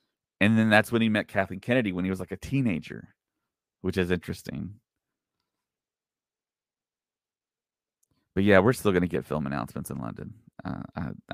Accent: American